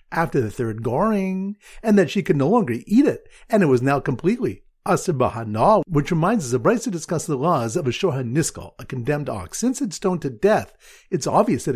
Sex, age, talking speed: male, 50-69, 215 wpm